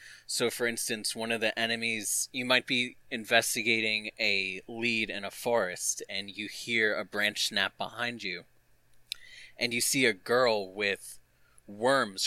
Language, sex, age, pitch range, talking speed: English, male, 20-39, 110-125 Hz, 150 wpm